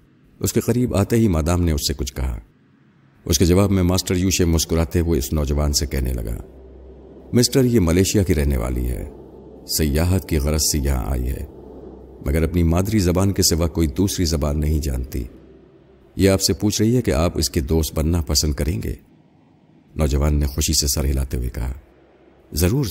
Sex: male